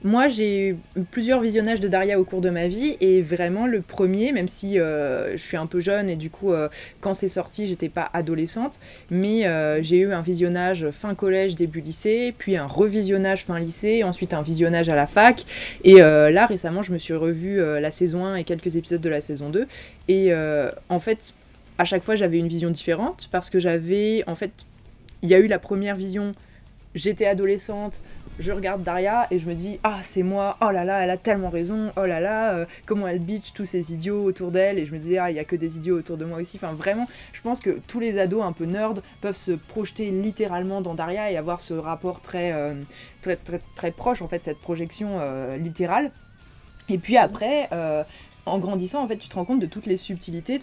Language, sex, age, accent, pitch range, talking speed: French, female, 20-39, French, 170-205 Hz, 225 wpm